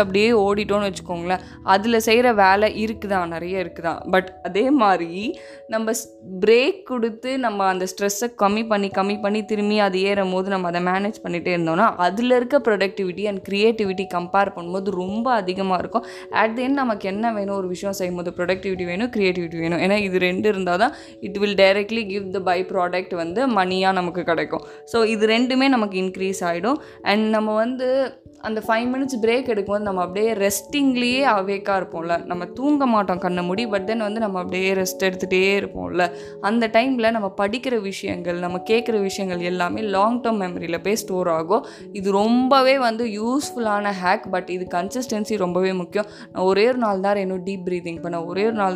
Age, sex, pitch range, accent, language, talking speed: 20-39, female, 180-220 Hz, native, Tamil, 170 wpm